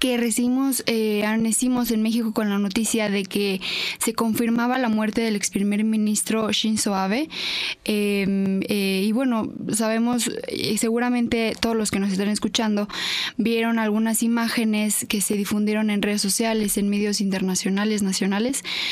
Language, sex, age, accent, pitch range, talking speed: Spanish, female, 20-39, Mexican, 205-235 Hz, 150 wpm